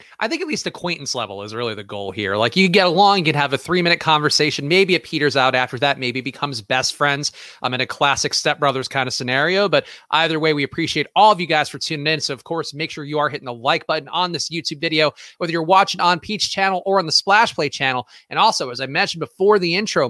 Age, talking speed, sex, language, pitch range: 30-49, 260 wpm, male, English, 140-190 Hz